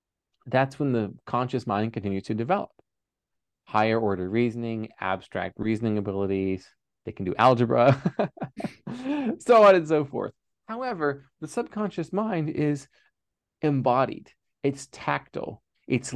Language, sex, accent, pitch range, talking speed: English, male, American, 115-155 Hz, 120 wpm